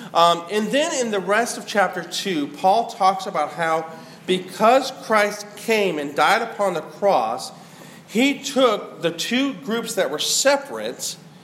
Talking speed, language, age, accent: 150 wpm, English, 40-59, American